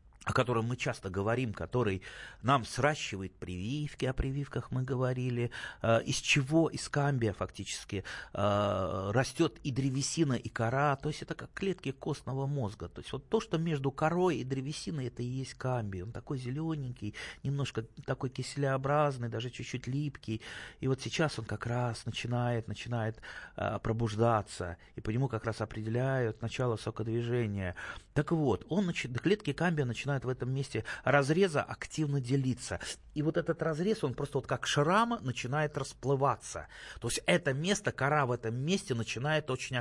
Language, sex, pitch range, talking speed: Russian, male, 115-145 Hz, 150 wpm